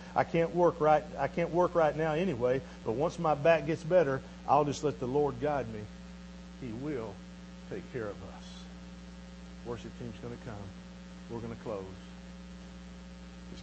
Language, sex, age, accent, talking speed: English, male, 50-69, American, 165 wpm